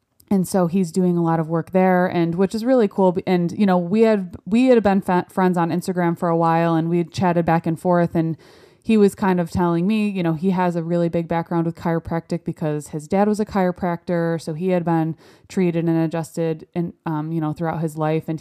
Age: 20-39